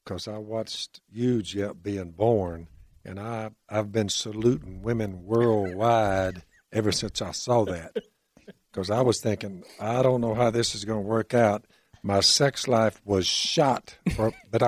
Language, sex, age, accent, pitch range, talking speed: English, male, 60-79, American, 100-130 Hz, 170 wpm